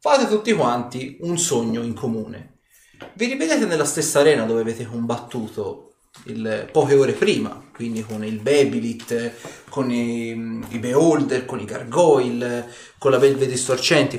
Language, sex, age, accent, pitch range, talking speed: Italian, male, 30-49, native, 115-170 Hz, 145 wpm